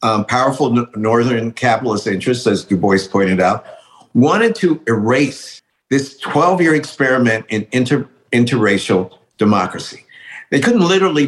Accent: American